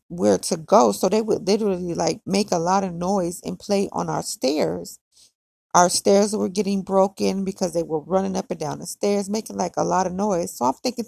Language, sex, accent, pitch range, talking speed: English, female, American, 165-215 Hz, 220 wpm